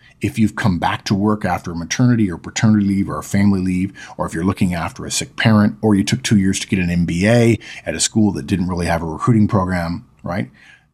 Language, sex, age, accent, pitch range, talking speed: English, male, 50-69, American, 100-130 Hz, 240 wpm